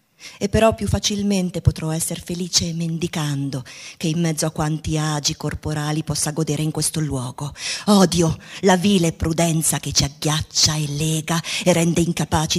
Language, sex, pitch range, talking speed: Italian, female, 150-180 Hz, 155 wpm